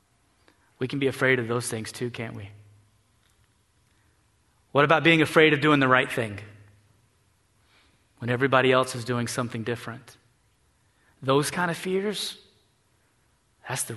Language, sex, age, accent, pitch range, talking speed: English, male, 30-49, American, 105-135 Hz, 140 wpm